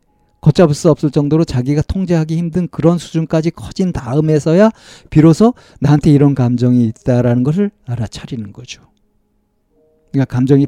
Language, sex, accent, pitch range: Korean, male, native, 110-150 Hz